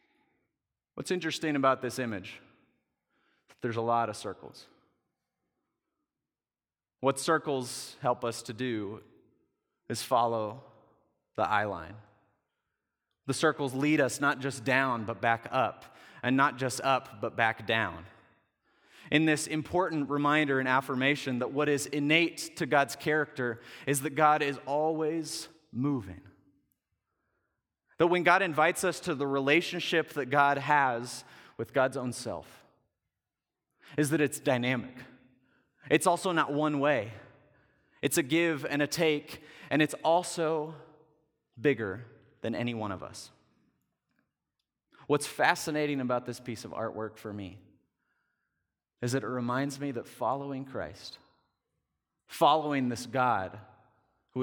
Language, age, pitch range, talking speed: English, 30-49, 120-150 Hz, 130 wpm